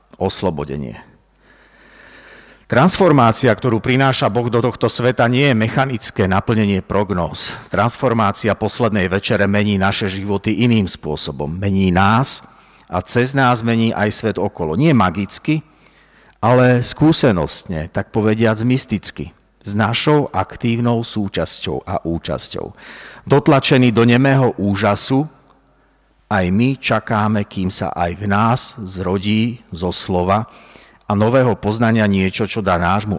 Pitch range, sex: 95-125 Hz, male